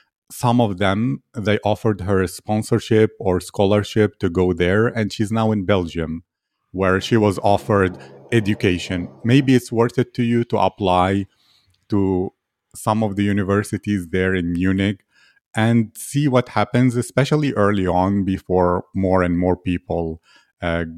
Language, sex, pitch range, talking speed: English, male, 95-115 Hz, 150 wpm